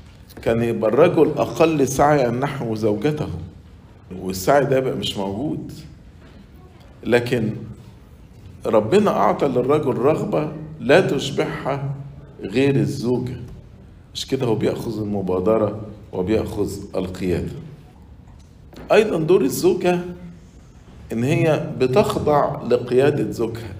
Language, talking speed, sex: English, 90 wpm, male